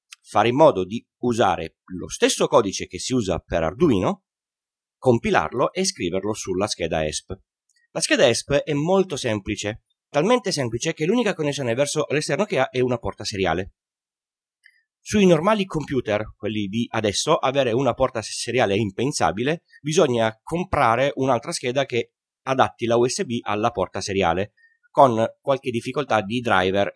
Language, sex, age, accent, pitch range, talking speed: Italian, male, 30-49, native, 105-170 Hz, 145 wpm